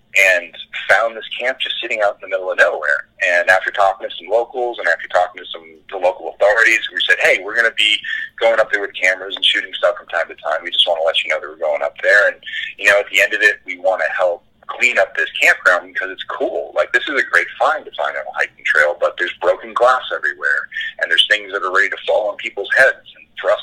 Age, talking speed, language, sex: 30-49, 260 wpm, English, male